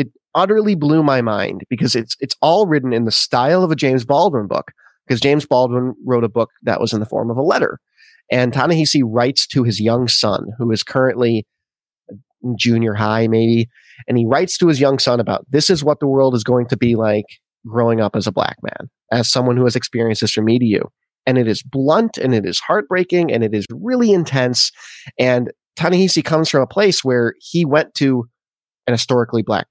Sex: male